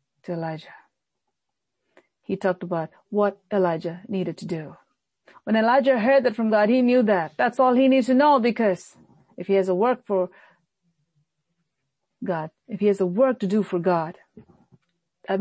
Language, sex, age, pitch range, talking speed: English, female, 40-59, 175-230 Hz, 165 wpm